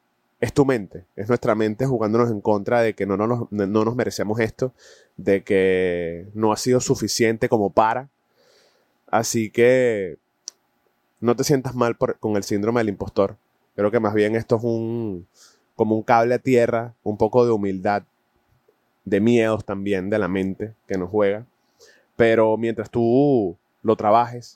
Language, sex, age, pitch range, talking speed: Spanish, male, 20-39, 105-120 Hz, 170 wpm